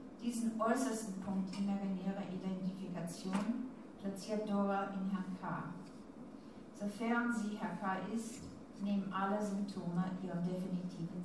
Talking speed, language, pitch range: 115 wpm, German, 185-235 Hz